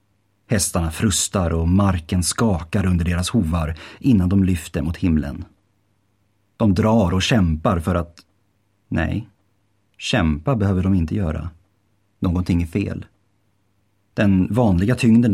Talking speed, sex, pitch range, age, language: 120 wpm, male, 90-105 Hz, 30-49, Swedish